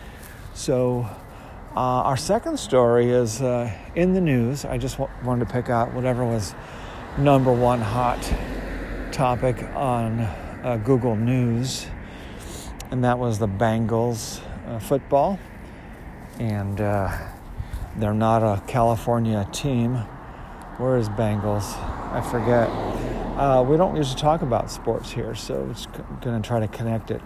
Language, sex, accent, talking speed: English, male, American, 135 wpm